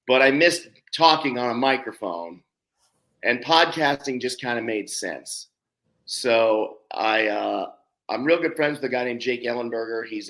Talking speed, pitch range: 170 wpm, 110-140 Hz